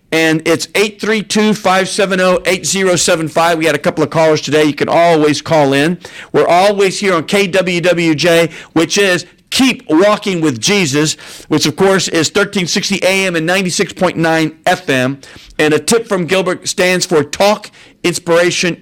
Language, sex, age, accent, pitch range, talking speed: English, male, 50-69, American, 130-175 Hz, 135 wpm